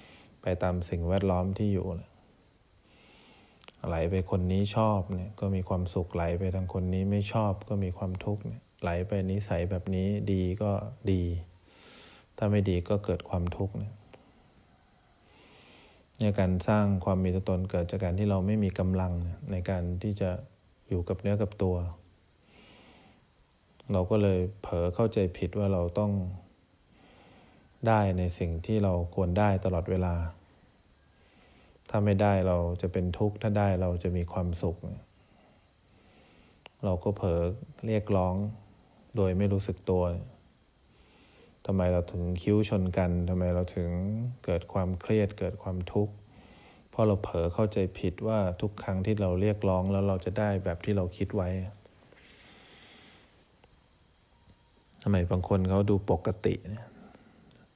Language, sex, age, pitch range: English, male, 20-39, 90-105 Hz